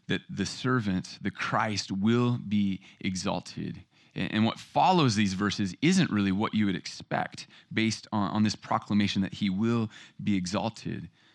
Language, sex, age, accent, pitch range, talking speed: English, male, 30-49, American, 95-120 Hz, 155 wpm